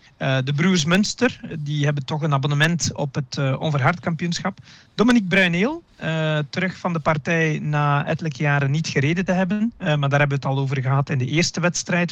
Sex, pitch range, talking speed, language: male, 145-170 Hz, 205 wpm, Dutch